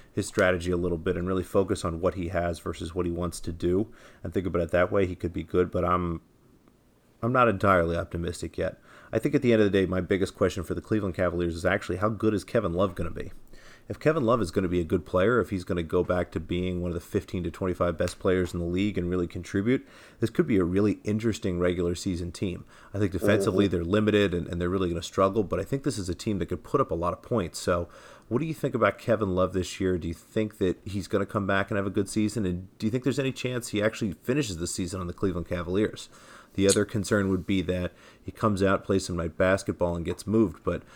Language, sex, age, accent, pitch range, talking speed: English, male, 30-49, American, 90-105 Hz, 270 wpm